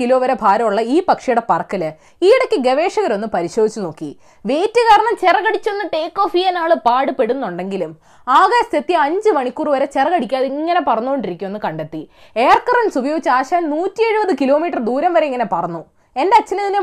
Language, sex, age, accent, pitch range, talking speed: Malayalam, female, 20-39, native, 235-360 Hz, 120 wpm